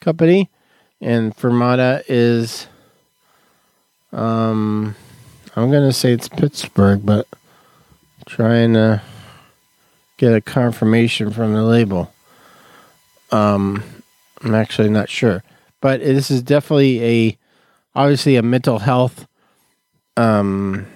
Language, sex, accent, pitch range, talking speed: English, male, American, 105-125 Hz, 95 wpm